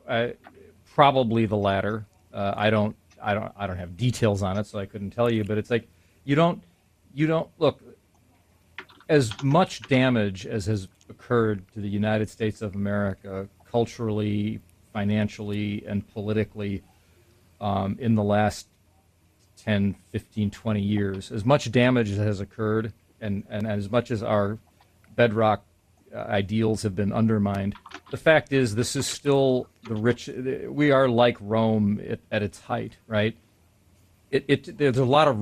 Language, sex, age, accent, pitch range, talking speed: English, male, 40-59, American, 100-120 Hz, 155 wpm